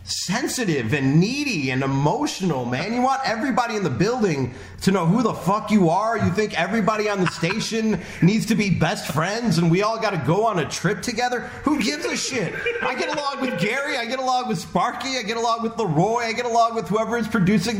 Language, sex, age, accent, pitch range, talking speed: English, male, 30-49, American, 155-230 Hz, 220 wpm